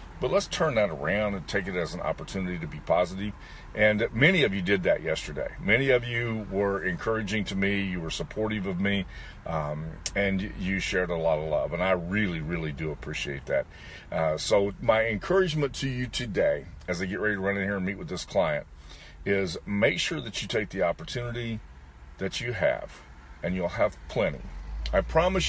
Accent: American